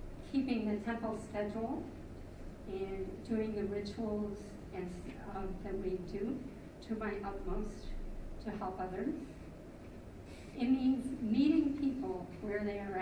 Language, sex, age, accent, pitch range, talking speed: English, female, 50-69, American, 180-210 Hz, 120 wpm